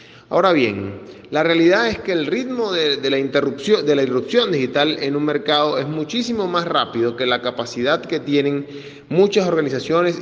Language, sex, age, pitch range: Spanish, male, 30-49, 140-190 Hz